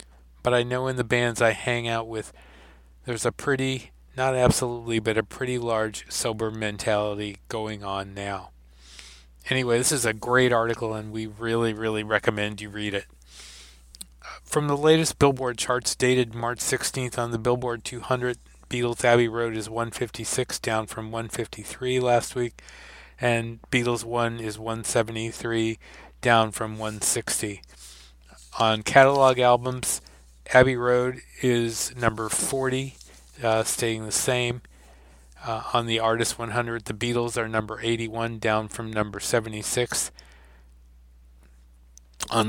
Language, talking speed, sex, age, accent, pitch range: English, 135 wpm, male, 40-59, American, 105-120 Hz